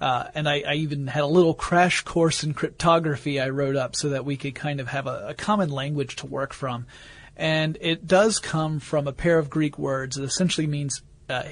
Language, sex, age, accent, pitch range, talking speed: English, male, 30-49, American, 140-165 Hz, 225 wpm